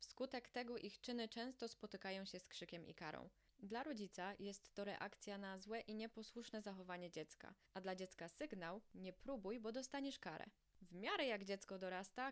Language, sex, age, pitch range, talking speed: Polish, female, 20-39, 185-225 Hz, 175 wpm